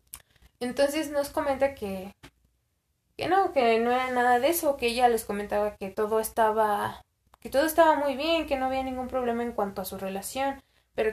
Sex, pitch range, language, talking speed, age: female, 200-235 Hz, Spanish, 190 wpm, 20-39